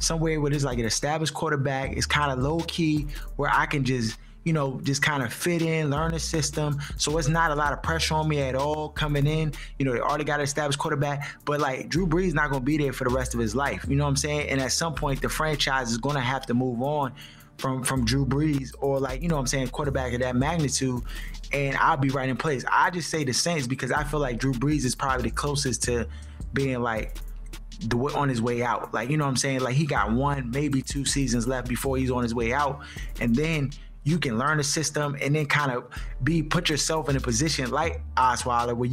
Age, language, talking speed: 20-39, English, 250 wpm